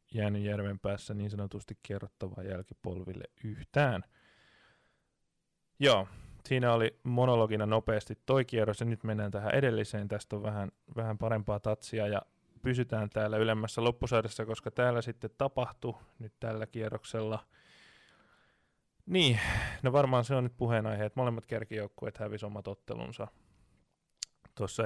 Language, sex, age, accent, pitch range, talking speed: Finnish, male, 20-39, native, 105-120 Hz, 125 wpm